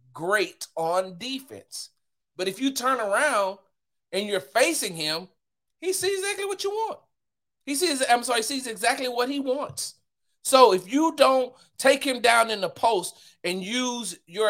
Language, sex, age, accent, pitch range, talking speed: English, male, 40-59, American, 170-255 Hz, 170 wpm